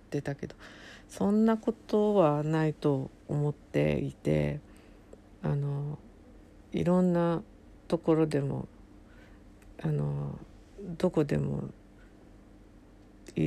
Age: 60-79